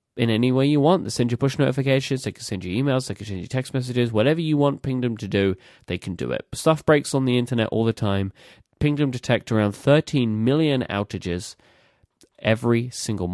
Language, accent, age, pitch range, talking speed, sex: English, British, 30-49, 100-135 Hz, 210 wpm, male